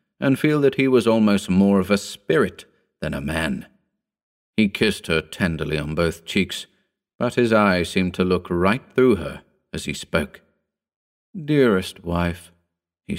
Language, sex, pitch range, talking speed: English, male, 85-110 Hz, 160 wpm